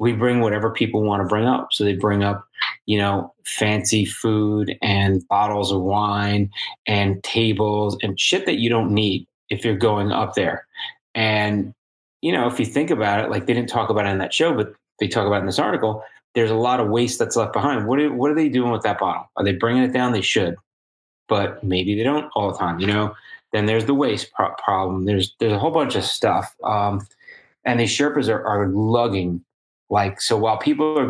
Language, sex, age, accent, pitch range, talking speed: English, male, 30-49, American, 100-120 Hz, 220 wpm